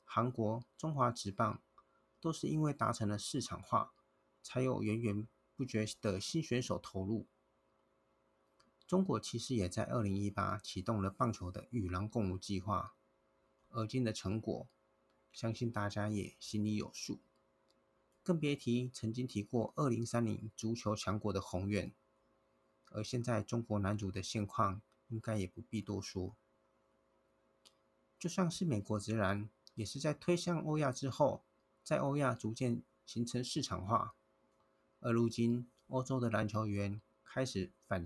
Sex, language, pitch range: male, Chinese, 105-120 Hz